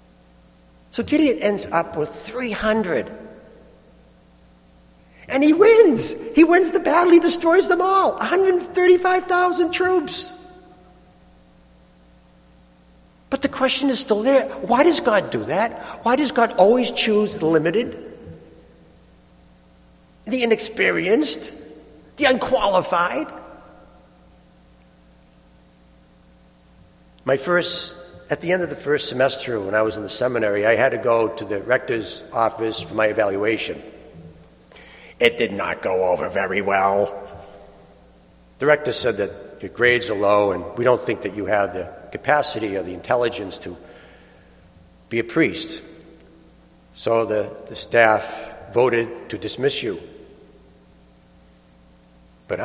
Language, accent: English, American